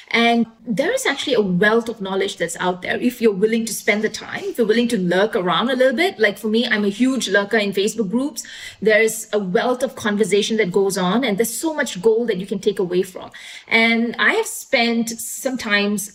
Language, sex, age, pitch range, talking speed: English, female, 20-39, 205-250 Hz, 230 wpm